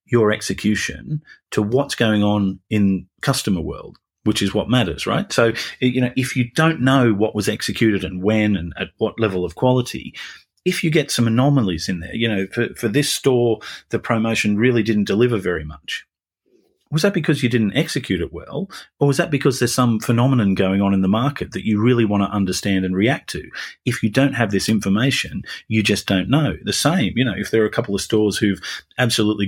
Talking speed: 210 wpm